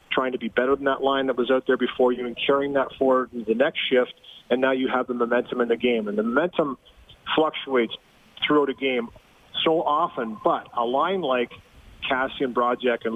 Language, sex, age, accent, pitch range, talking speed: English, male, 40-59, American, 120-140 Hz, 210 wpm